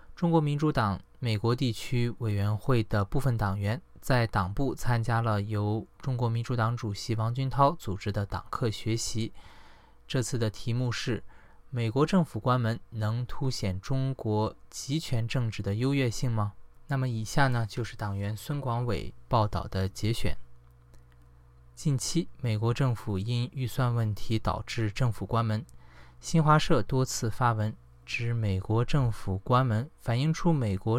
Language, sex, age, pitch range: Chinese, male, 20-39, 105-130 Hz